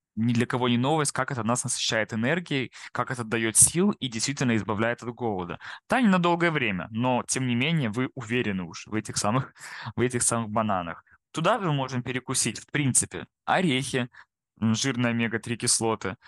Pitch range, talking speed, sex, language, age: 110-135 Hz, 180 wpm, male, Russian, 20-39